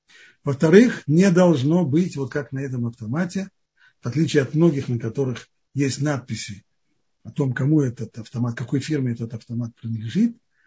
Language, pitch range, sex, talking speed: Russian, 130-160 Hz, male, 150 wpm